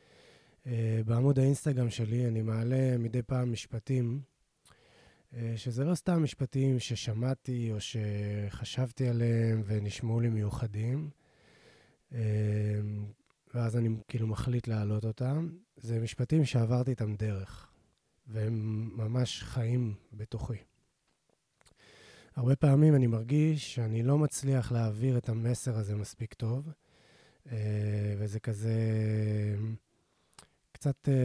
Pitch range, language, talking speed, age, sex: 110-130 Hz, Hebrew, 95 wpm, 20-39, male